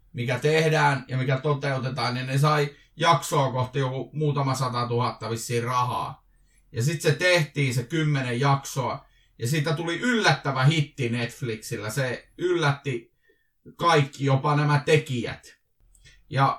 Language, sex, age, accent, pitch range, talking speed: Finnish, male, 30-49, native, 125-155 Hz, 130 wpm